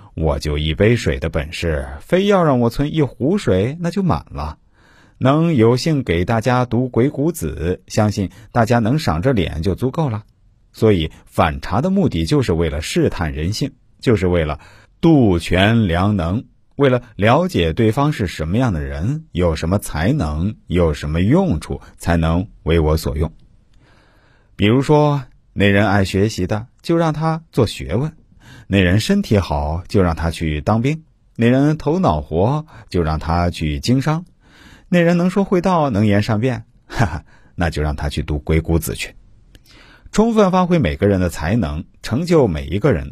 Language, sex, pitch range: Chinese, male, 85-130 Hz